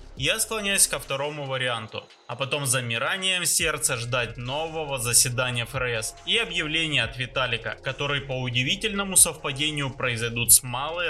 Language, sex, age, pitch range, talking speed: Russian, male, 20-39, 125-165 Hz, 130 wpm